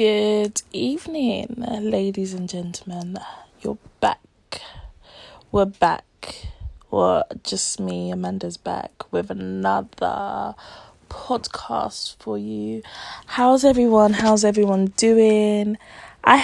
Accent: British